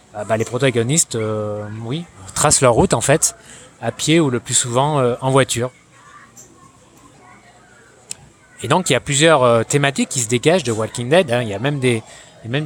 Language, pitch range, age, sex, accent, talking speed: French, 115-150 Hz, 20-39, male, French, 190 wpm